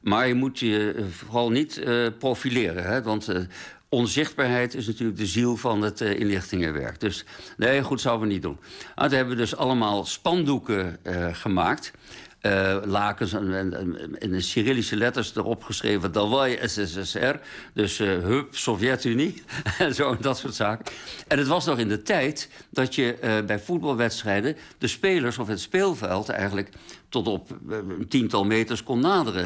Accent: Dutch